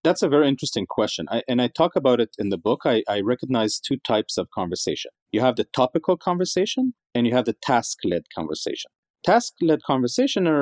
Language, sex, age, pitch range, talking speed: English, male, 40-59, 110-150 Hz, 185 wpm